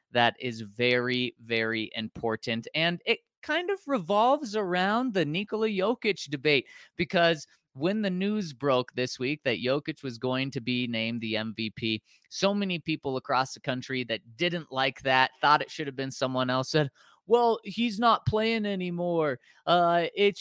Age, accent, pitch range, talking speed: 30-49, American, 125-190 Hz, 165 wpm